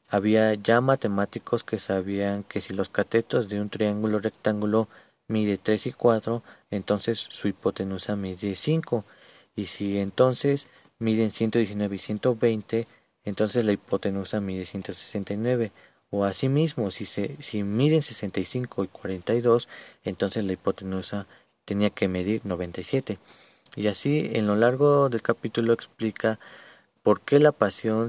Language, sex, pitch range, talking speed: Spanish, male, 100-115 Hz, 130 wpm